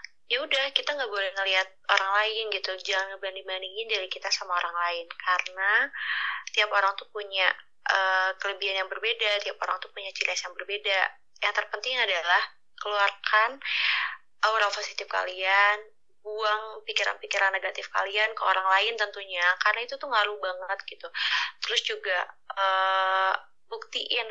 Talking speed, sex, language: 140 wpm, female, Indonesian